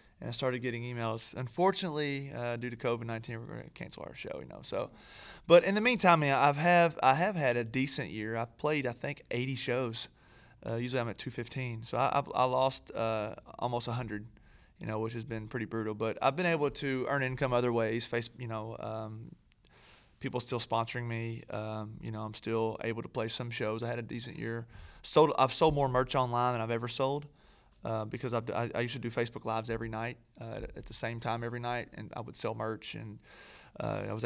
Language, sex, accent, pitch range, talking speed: English, male, American, 115-135 Hz, 220 wpm